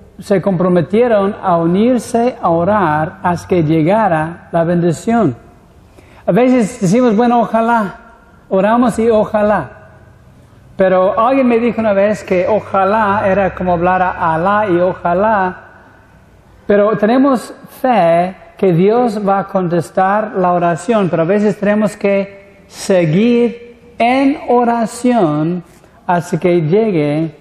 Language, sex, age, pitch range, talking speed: Spanish, male, 60-79, 170-215 Hz, 120 wpm